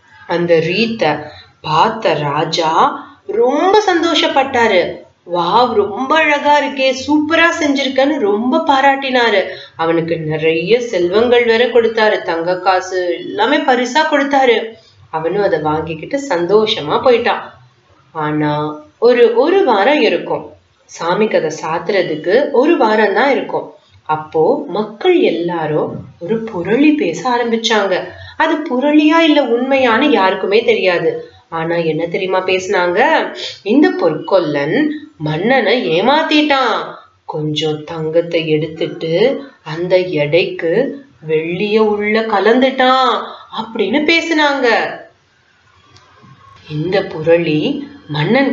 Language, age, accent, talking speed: Tamil, 30-49, native, 40 wpm